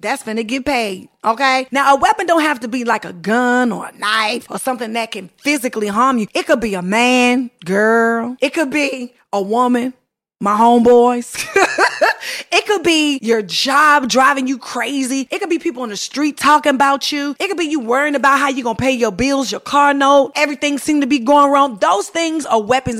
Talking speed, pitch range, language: 215 wpm, 215-285 Hz, English